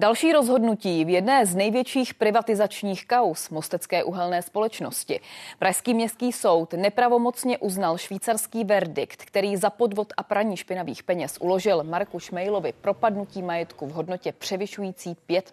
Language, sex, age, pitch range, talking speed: Czech, female, 30-49, 180-230 Hz, 130 wpm